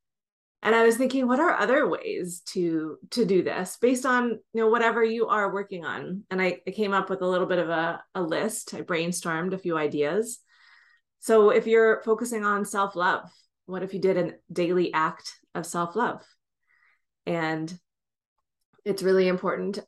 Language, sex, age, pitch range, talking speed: English, female, 20-39, 170-210 Hz, 175 wpm